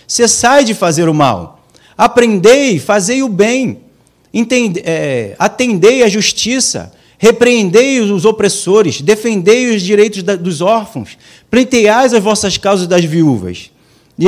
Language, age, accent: Portuguese, 40-59, Brazilian